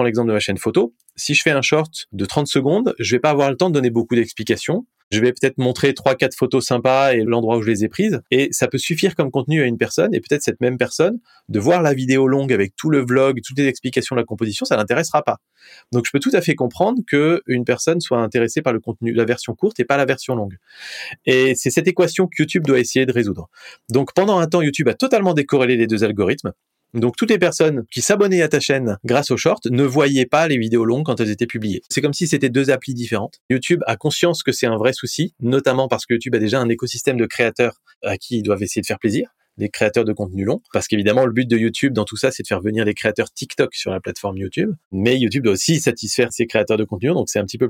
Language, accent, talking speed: French, French, 265 wpm